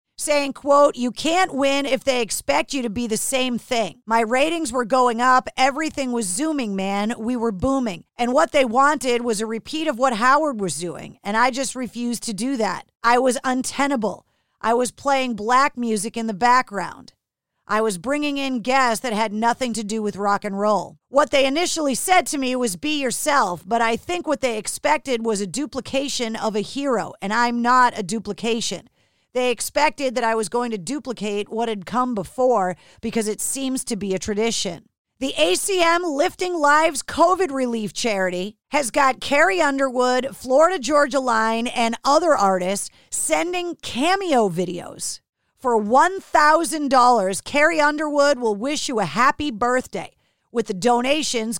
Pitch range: 225-285 Hz